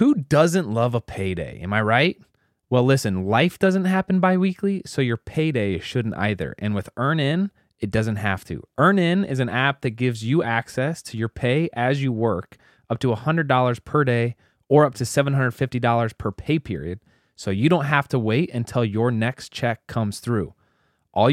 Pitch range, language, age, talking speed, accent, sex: 105-135 Hz, English, 20-39, 190 wpm, American, male